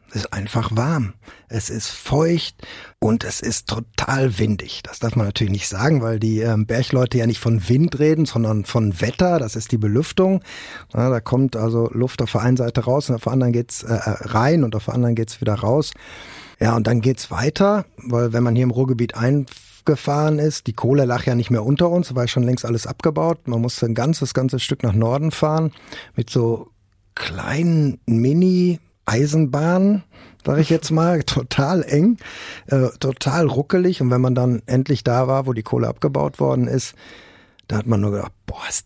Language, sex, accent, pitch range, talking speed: German, male, German, 115-140 Hz, 200 wpm